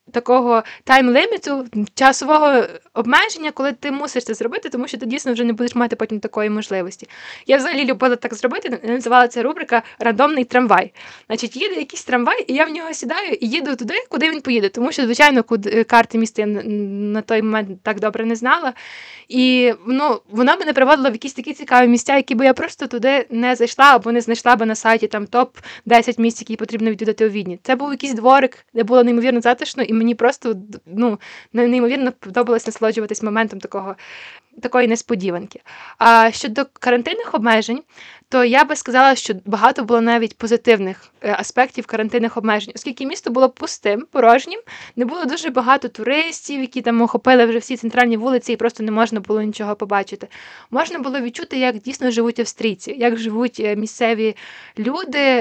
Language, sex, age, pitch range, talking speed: Ukrainian, female, 20-39, 225-265 Hz, 175 wpm